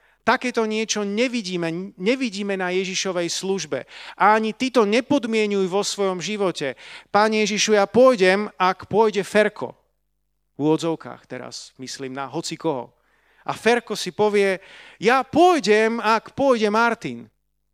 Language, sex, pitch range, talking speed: Slovak, male, 165-225 Hz, 125 wpm